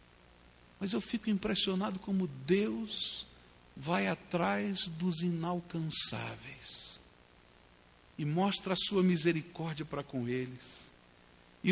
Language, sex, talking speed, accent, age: English, male, 95 wpm, Brazilian, 60-79